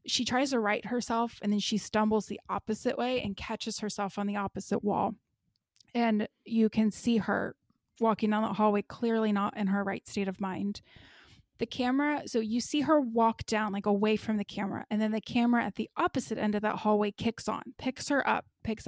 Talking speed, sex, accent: 210 wpm, female, American